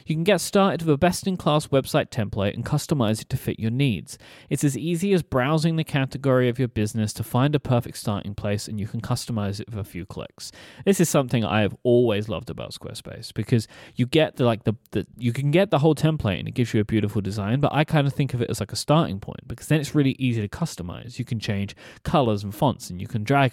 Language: English